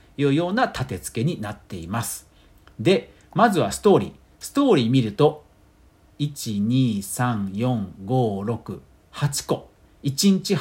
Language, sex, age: Japanese, male, 50-69